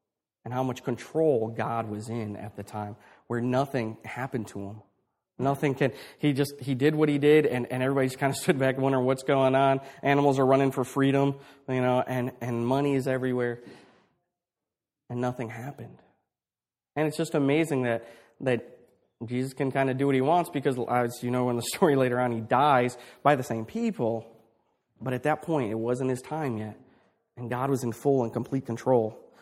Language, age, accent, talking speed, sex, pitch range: English, 30-49, American, 195 wpm, male, 115-140 Hz